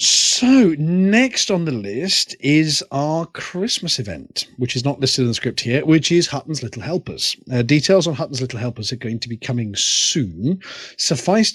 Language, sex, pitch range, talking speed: English, male, 125-170 Hz, 180 wpm